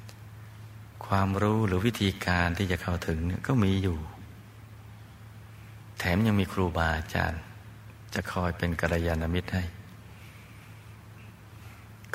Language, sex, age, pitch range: Thai, male, 60-79, 90-110 Hz